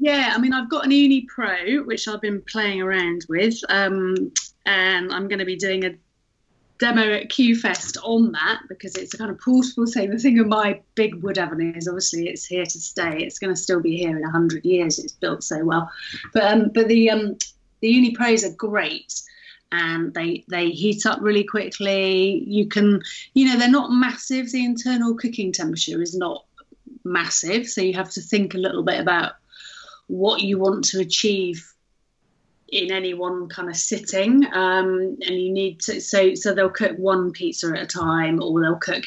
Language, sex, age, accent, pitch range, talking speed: English, female, 30-49, British, 175-225 Hz, 195 wpm